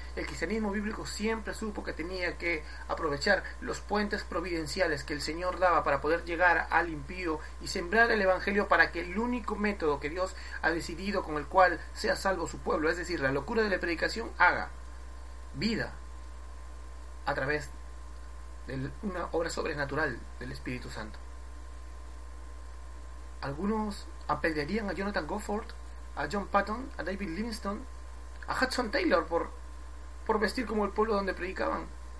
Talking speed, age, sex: 150 wpm, 30-49, male